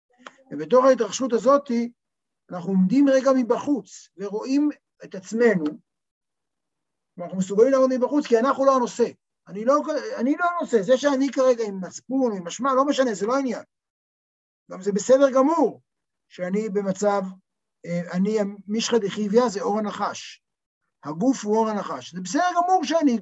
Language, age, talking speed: Hebrew, 50-69, 140 wpm